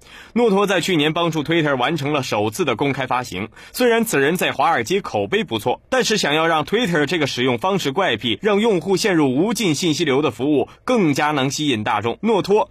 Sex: male